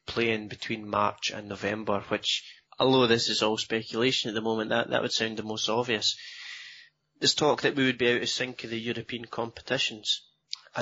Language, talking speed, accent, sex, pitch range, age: English, 195 wpm, British, male, 110-130 Hz, 20-39